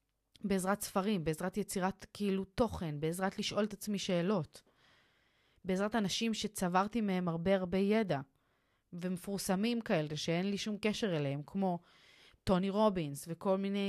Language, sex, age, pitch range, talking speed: Hebrew, female, 30-49, 175-215 Hz, 130 wpm